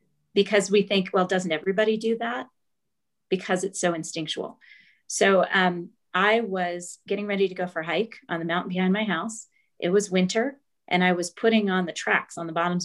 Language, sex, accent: English, female, American